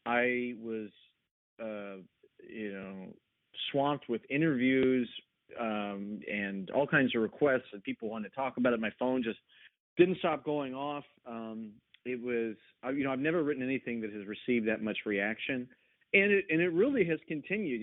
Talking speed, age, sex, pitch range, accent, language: 170 wpm, 40-59, male, 105-130 Hz, American, English